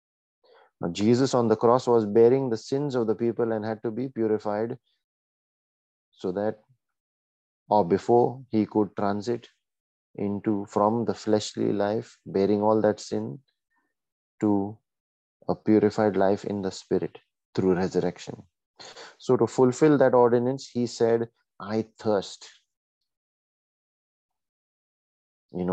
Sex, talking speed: male, 120 wpm